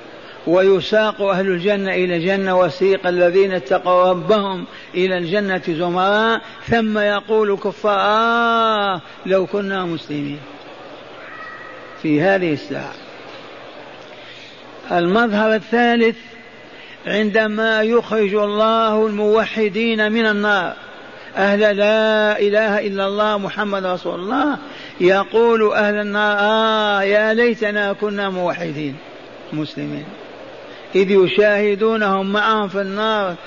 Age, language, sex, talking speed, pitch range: 50-69, Arabic, male, 95 wpm, 185-215 Hz